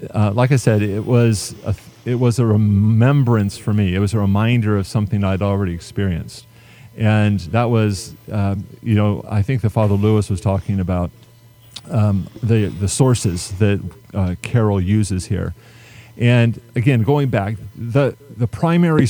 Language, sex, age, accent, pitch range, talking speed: English, male, 40-59, American, 100-120 Hz, 165 wpm